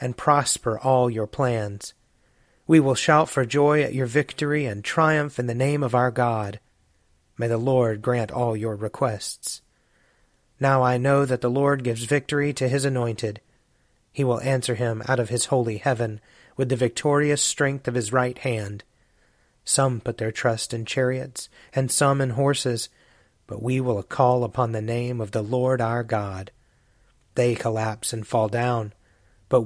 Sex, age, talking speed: male, 30-49, 170 wpm